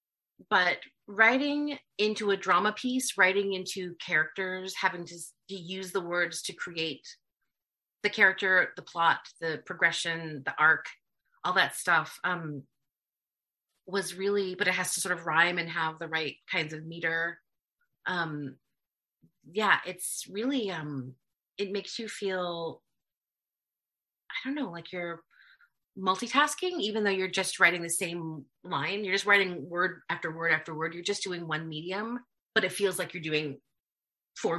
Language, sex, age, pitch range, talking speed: English, female, 30-49, 160-205 Hz, 155 wpm